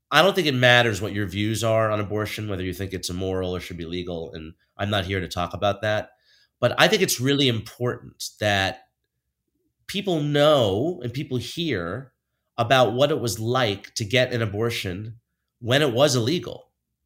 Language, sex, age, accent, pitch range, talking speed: English, male, 30-49, American, 105-135 Hz, 185 wpm